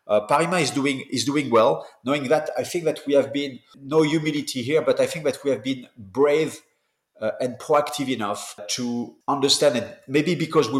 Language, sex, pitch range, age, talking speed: English, male, 110-135 Hz, 30-49, 200 wpm